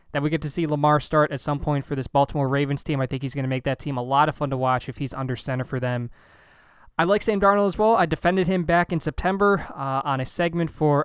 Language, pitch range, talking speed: English, 140-160 Hz, 280 wpm